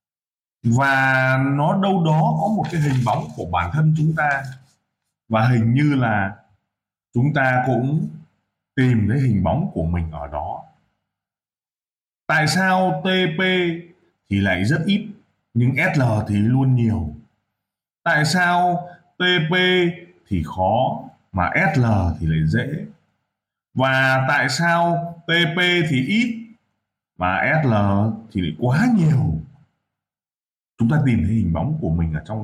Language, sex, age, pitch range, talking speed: Vietnamese, male, 20-39, 110-170 Hz, 135 wpm